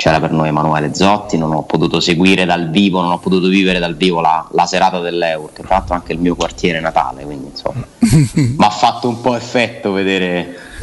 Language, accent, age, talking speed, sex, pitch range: Italian, native, 30-49, 210 wpm, male, 85-105 Hz